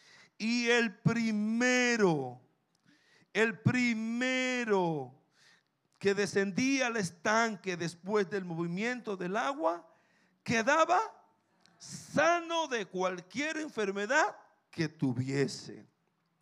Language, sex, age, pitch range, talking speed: Spanish, male, 50-69, 135-200 Hz, 75 wpm